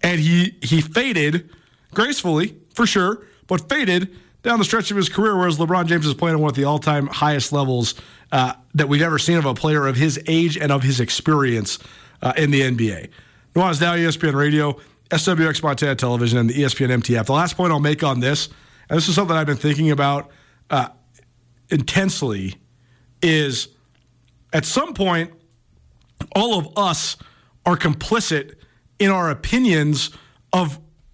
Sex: male